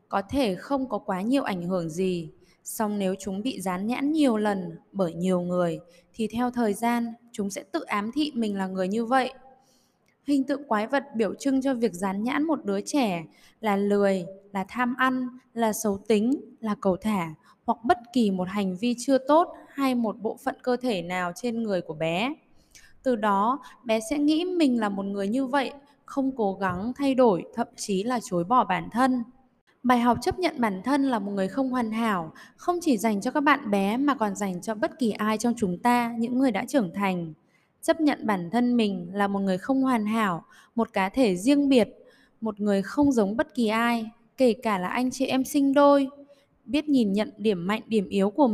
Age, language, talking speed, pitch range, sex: 10-29, Vietnamese, 215 wpm, 200-265 Hz, female